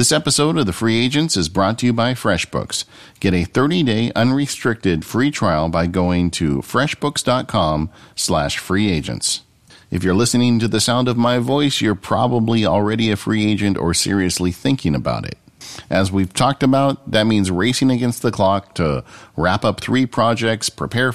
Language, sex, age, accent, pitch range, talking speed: English, male, 50-69, American, 90-125 Hz, 170 wpm